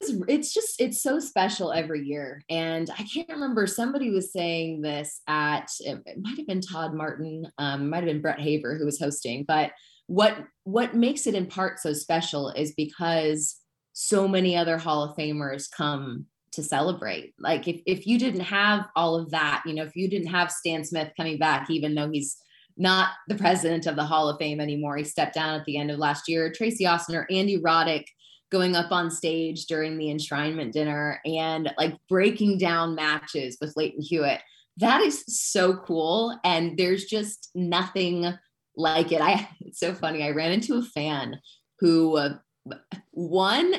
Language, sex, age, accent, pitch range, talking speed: English, female, 20-39, American, 155-195 Hz, 185 wpm